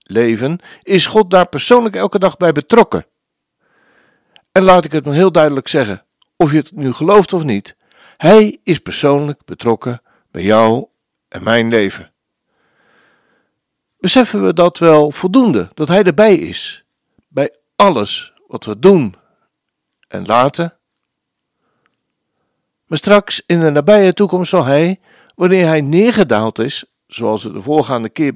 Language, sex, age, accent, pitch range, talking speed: Dutch, male, 60-79, Dutch, 145-205 Hz, 140 wpm